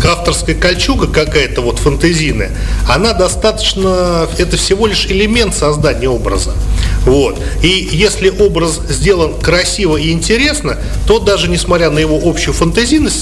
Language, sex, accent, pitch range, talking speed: Russian, male, native, 130-180 Hz, 125 wpm